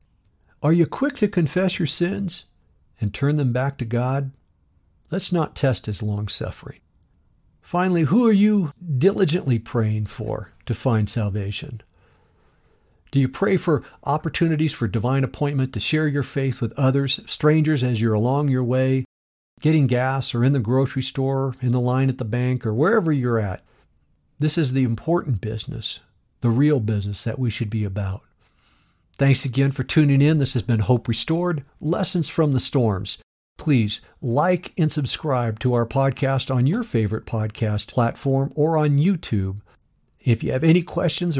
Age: 60-79